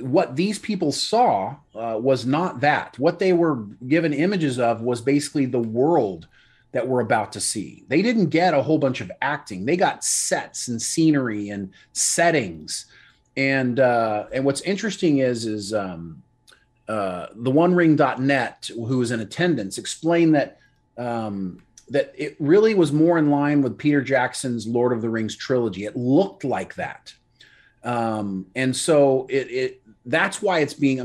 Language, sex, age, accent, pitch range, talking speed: English, male, 30-49, American, 120-155 Hz, 165 wpm